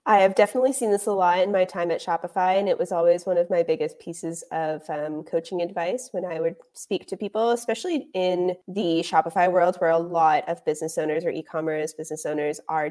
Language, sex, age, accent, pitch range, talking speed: English, female, 20-39, American, 165-200 Hz, 225 wpm